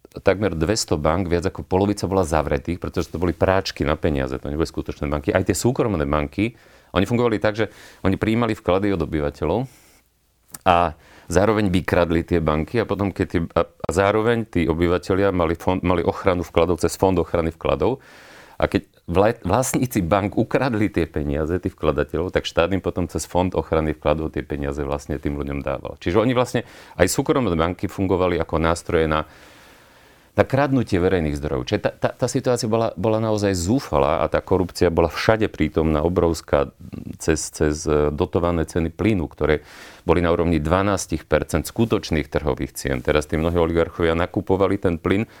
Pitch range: 80-100 Hz